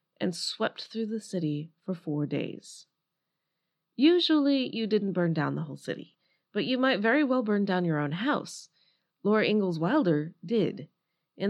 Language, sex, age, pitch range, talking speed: English, female, 30-49, 170-230 Hz, 160 wpm